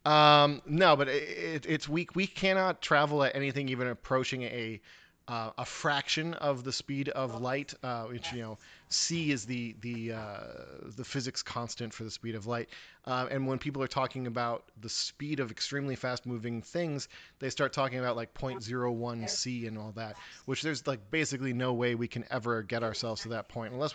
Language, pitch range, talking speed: English, 120-140 Hz, 200 wpm